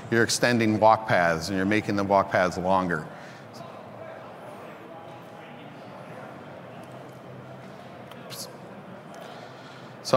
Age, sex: 40-59, male